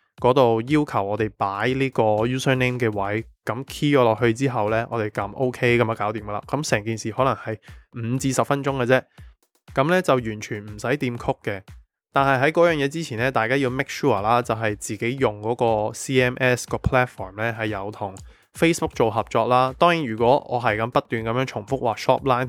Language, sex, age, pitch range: Chinese, male, 20-39, 110-135 Hz